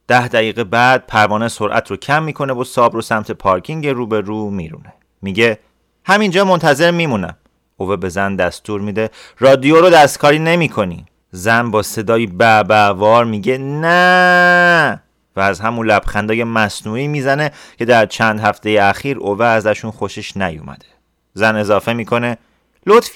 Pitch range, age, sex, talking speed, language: 105-135 Hz, 30-49, male, 145 wpm, Persian